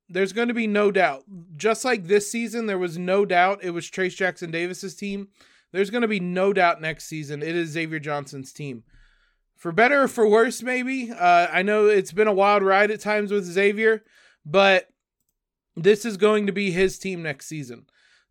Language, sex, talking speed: English, male, 200 wpm